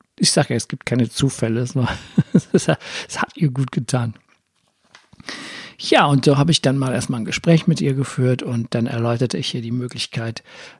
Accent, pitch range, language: German, 130-160 Hz, German